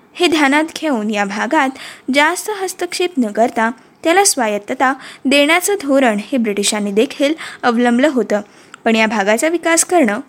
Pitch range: 230-335 Hz